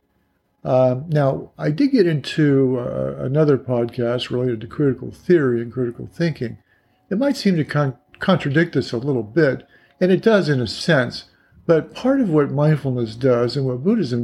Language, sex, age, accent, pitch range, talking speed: English, male, 50-69, American, 120-150 Hz, 170 wpm